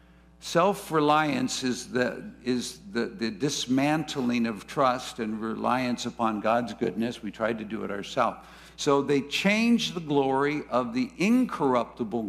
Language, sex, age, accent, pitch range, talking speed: English, male, 60-79, American, 115-150 Hz, 125 wpm